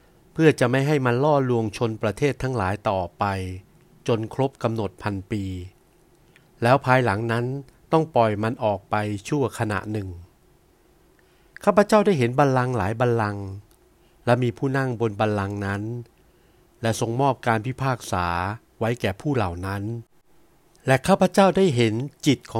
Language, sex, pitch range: Thai, male, 105-140 Hz